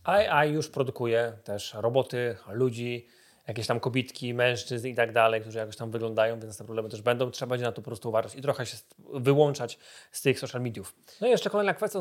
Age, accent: 20-39, native